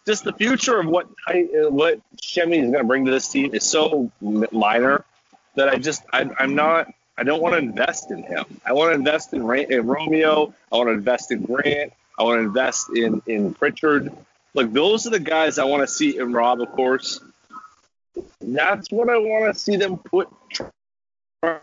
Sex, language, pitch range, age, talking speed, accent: male, English, 125-190 Hz, 30-49, 205 wpm, American